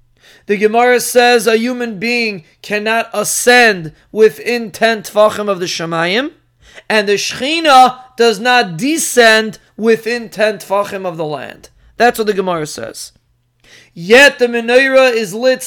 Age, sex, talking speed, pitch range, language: 30-49, male, 140 wpm, 210-250 Hz, English